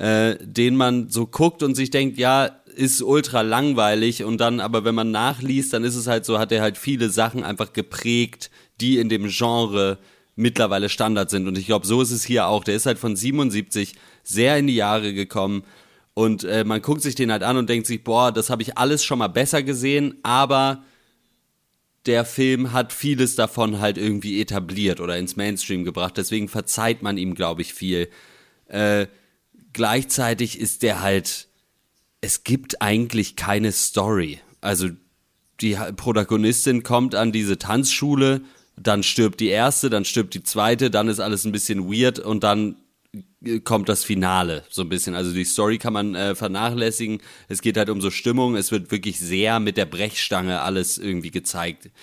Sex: male